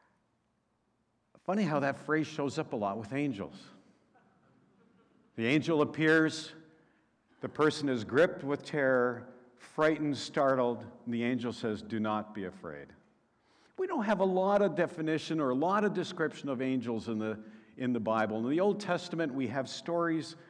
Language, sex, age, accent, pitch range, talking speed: English, male, 60-79, American, 120-160 Hz, 160 wpm